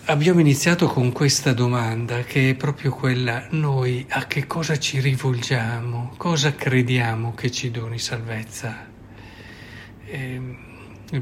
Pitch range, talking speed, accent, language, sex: 115-135 Hz, 120 wpm, native, Italian, male